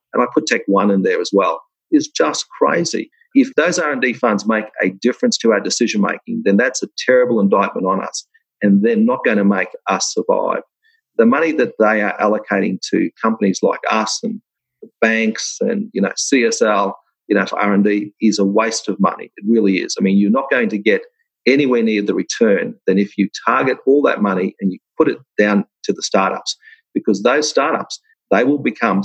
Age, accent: 40-59, Australian